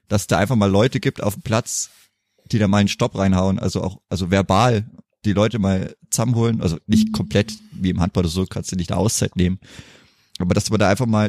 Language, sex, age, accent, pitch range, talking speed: German, male, 30-49, German, 100-125 Hz, 235 wpm